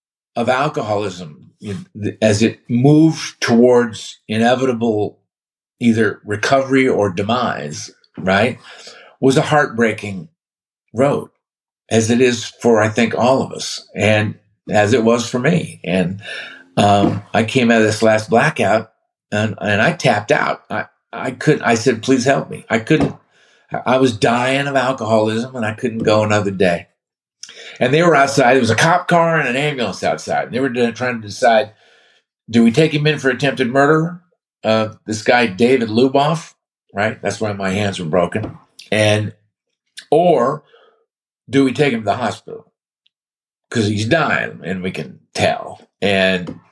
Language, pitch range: English, 110-135 Hz